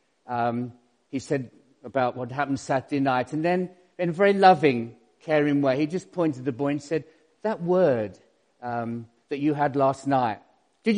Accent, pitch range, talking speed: British, 125-175 Hz, 175 wpm